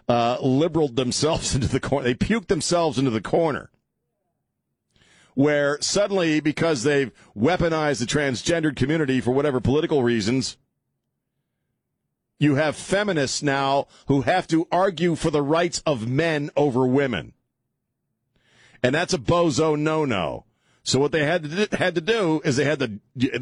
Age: 40-59